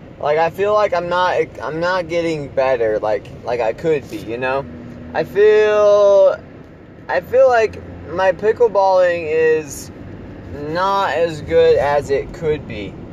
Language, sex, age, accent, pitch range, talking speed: English, male, 20-39, American, 140-195 Hz, 145 wpm